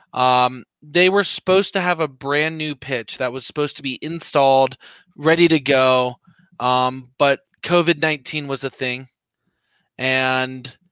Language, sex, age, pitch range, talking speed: English, male, 20-39, 130-160 Hz, 145 wpm